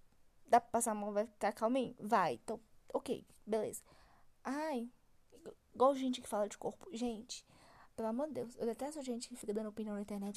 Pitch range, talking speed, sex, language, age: 220-290 Hz, 190 wpm, female, Portuguese, 10-29